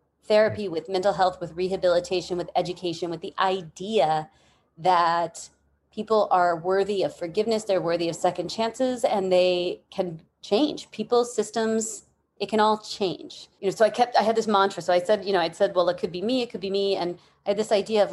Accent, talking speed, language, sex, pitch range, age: American, 210 wpm, English, female, 175-210 Hz, 30-49